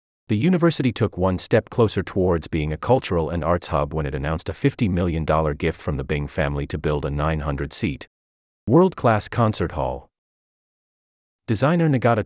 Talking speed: 160 wpm